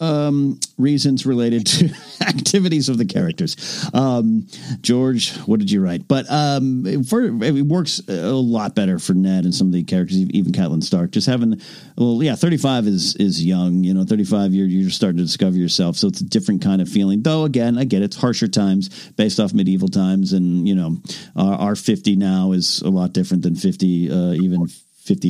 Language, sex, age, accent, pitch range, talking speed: English, male, 50-69, American, 95-135 Hz, 200 wpm